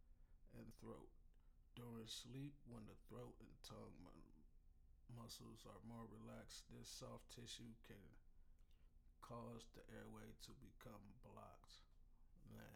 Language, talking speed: English, 115 wpm